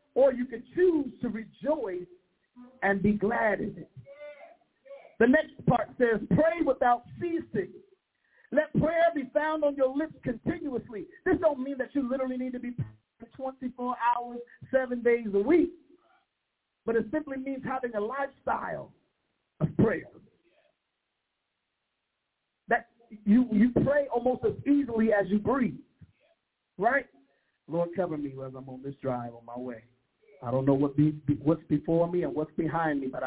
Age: 50-69